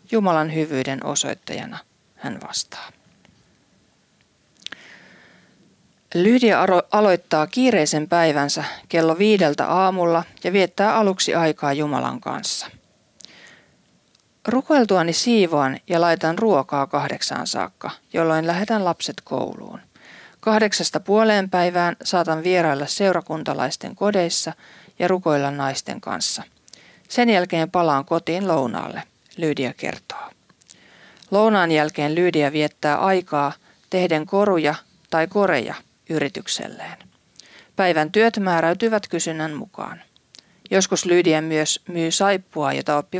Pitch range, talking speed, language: 155-195 Hz, 95 wpm, Finnish